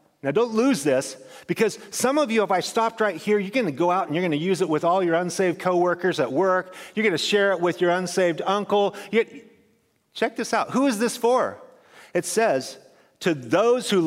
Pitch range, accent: 160-225 Hz, American